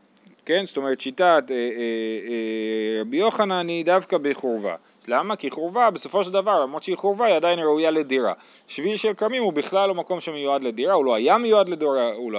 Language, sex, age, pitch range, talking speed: Hebrew, male, 30-49, 130-190 Hz, 195 wpm